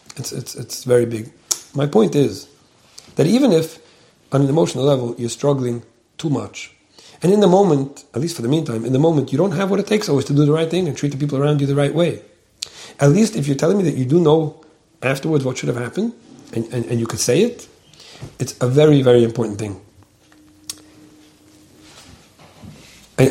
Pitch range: 120-150 Hz